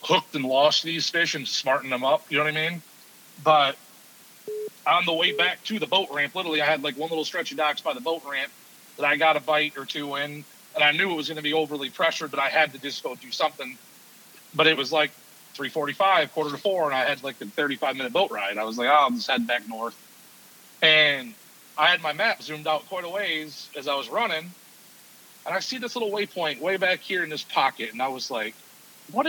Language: English